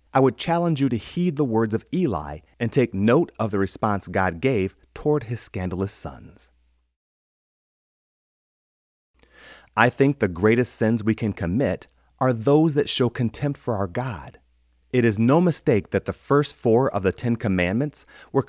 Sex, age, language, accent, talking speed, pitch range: male, 30-49, English, American, 165 wpm, 95-130 Hz